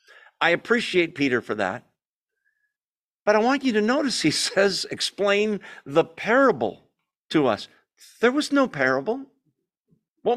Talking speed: 135 wpm